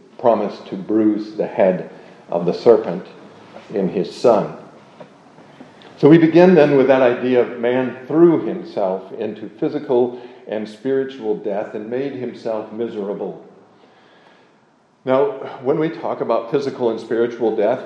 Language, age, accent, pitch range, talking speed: English, 50-69, American, 115-140 Hz, 135 wpm